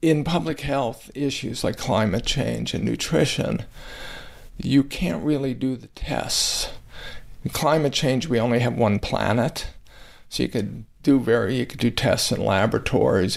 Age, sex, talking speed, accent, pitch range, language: 50-69, male, 155 wpm, American, 115-140 Hz, English